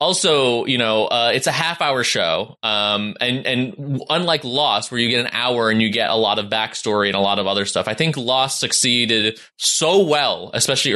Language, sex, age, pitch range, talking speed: English, male, 20-39, 110-145 Hz, 215 wpm